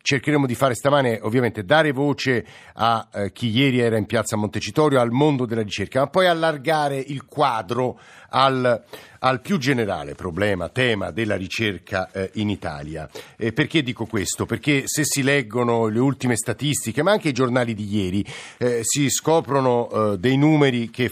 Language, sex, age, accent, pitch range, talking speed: Italian, male, 50-69, native, 110-140 Hz, 170 wpm